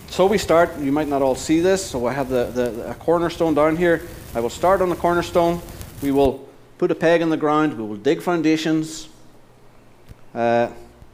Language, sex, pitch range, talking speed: English, male, 120-160 Hz, 200 wpm